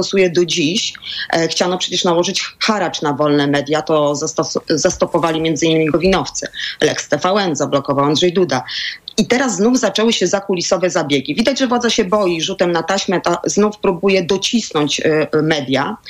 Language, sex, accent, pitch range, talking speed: Polish, female, native, 170-220 Hz, 155 wpm